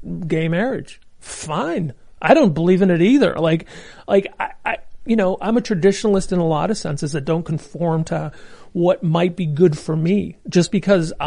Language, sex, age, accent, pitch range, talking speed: English, male, 40-59, American, 165-210 Hz, 185 wpm